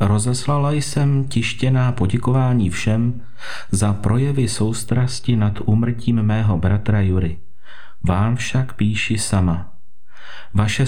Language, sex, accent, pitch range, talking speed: Czech, male, native, 100-125 Hz, 100 wpm